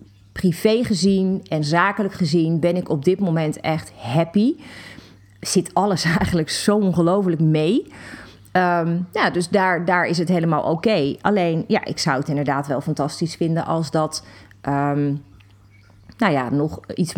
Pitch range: 130-180 Hz